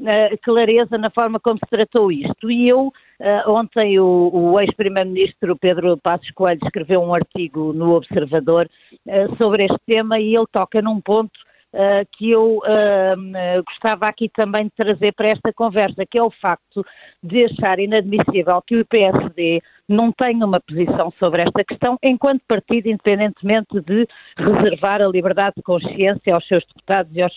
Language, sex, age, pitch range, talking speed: Portuguese, female, 50-69, 185-225 Hz, 155 wpm